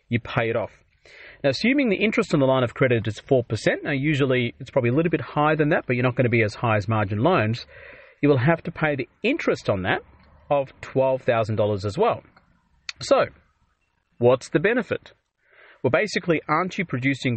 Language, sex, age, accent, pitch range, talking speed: English, male, 30-49, Australian, 120-165 Hz, 200 wpm